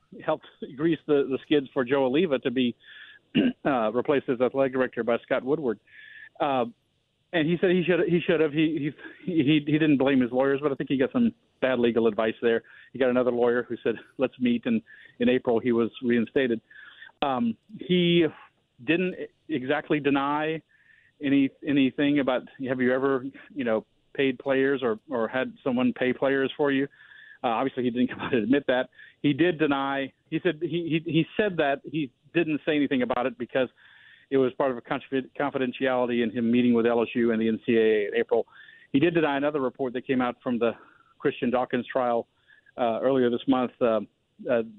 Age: 40-59